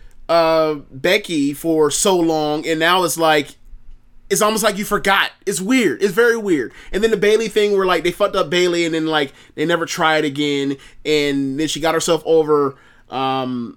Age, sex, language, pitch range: 20-39, male, English, 135-165 Hz